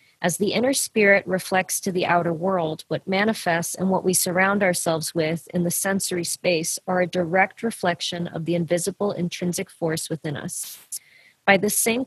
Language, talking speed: English, 175 wpm